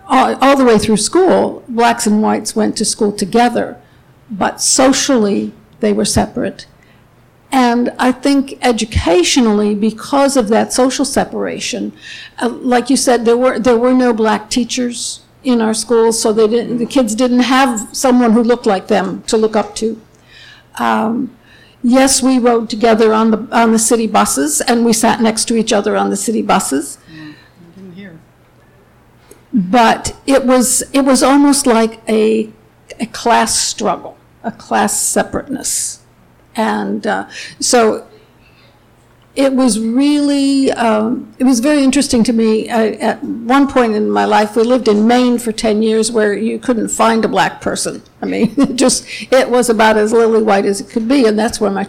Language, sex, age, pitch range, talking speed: English, female, 60-79, 220-255 Hz, 165 wpm